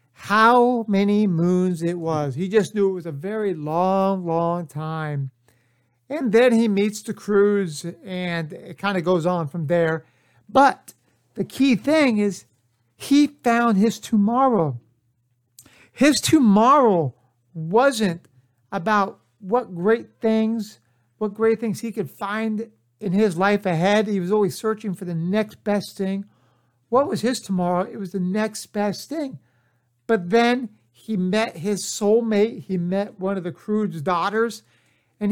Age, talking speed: 60-79, 150 wpm